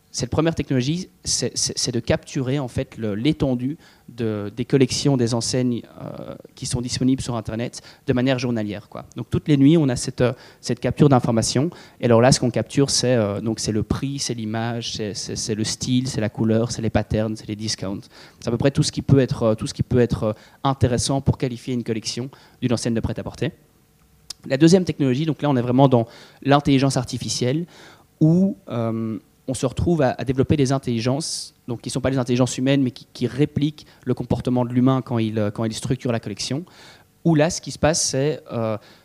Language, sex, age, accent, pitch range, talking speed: French, male, 30-49, French, 115-140 Hz, 215 wpm